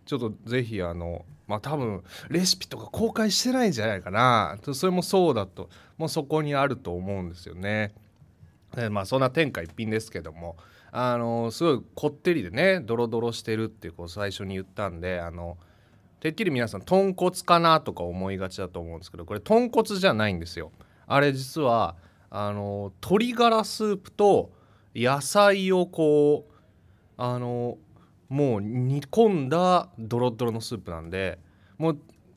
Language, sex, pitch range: Japanese, male, 95-160 Hz